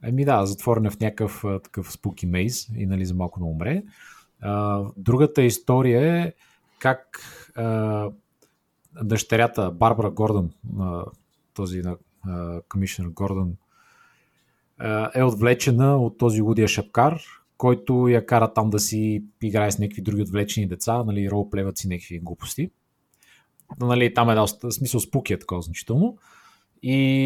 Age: 30-49